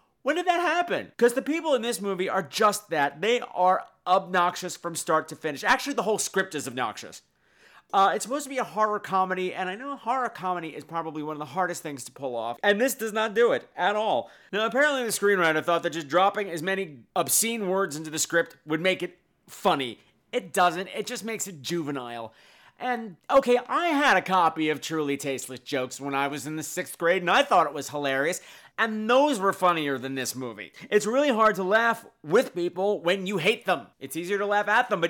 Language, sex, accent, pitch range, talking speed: English, male, American, 155-225 Hz, 225 wpm